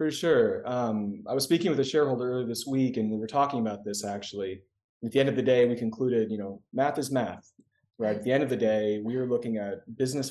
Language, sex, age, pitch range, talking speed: Arabic, male, 30-49, 105-130 Hz, 255 wpm